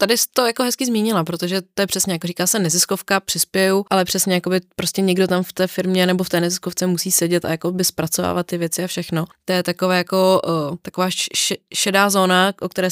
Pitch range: 165-195 Hz